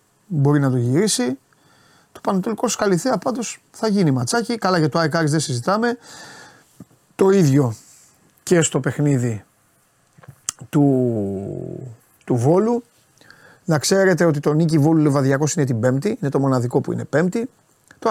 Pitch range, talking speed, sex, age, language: 130-175 Hz, 140 wpm, male, 30-49, Greek